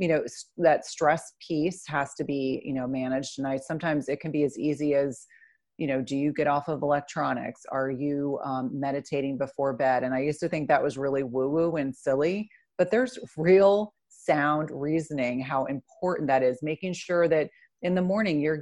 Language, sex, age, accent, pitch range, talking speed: English, female, 30-49, American, 140-160 Hz, 200 wpm